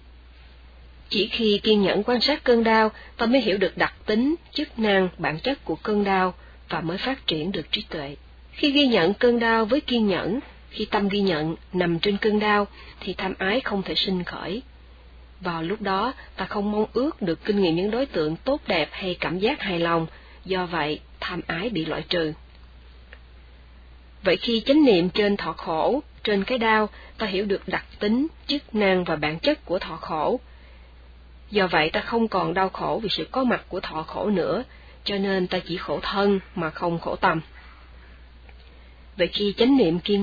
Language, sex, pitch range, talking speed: Vietnamese, female, 155-215 Hz, 195 wpm